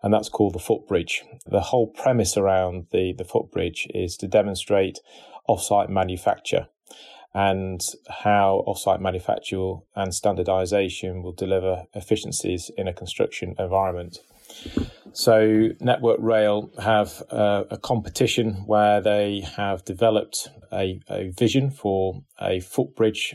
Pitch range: 95-110 Hz